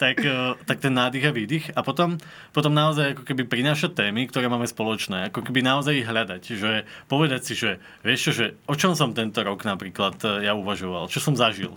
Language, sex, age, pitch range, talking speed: Slovak, male, 20-39, 110-140 Hz, 205 wpm